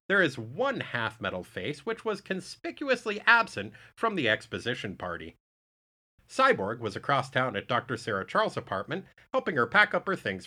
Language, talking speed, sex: English, 160 wpm, male